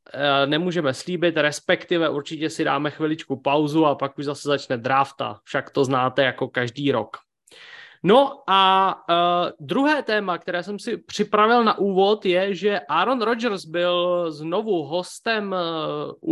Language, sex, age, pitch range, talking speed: Czech, male, 20-39, 155-190 Hz, 145 wpm